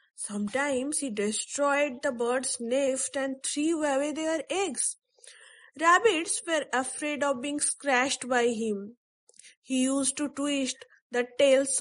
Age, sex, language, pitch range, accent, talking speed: 20-39, female, English, 235-330 Hz, Indian, 125 wpm